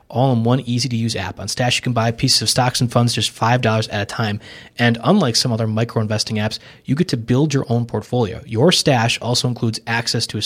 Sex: male